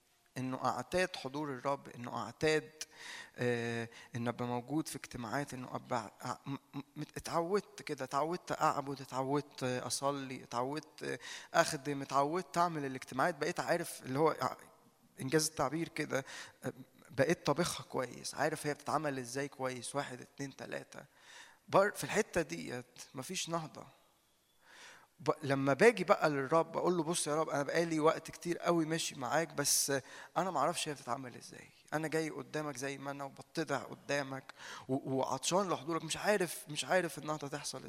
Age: 20-39